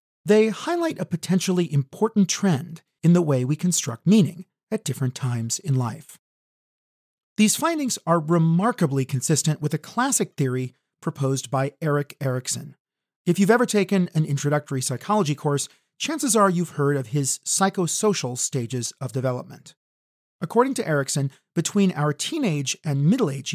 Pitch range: 140-190 Hz